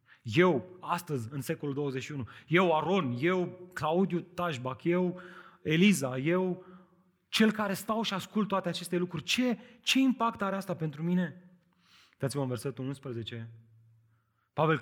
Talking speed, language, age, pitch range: 135 wpm, Romanian, 30-49, 140-215 Hz